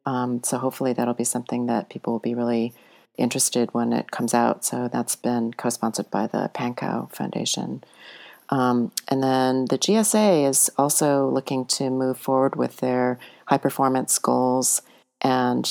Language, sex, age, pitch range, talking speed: English, female, 40-59, 120-140 Hz, 155 wpm